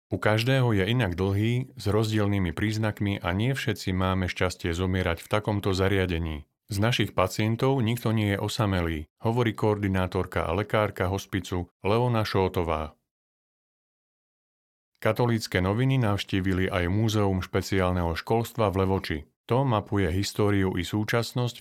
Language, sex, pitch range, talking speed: Slovak, male, 95-110 Hz, 125 wpm